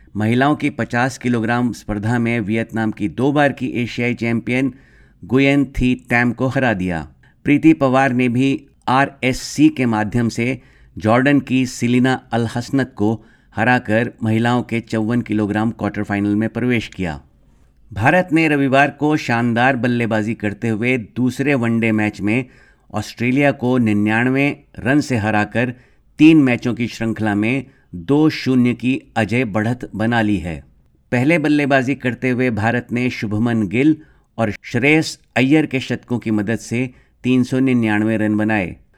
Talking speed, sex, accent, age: 140 wpm, male, native, 50-69